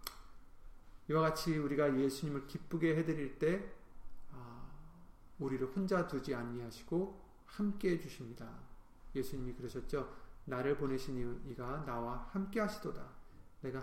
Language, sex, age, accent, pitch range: Korean, male, 40-59, native, 125-175 Hz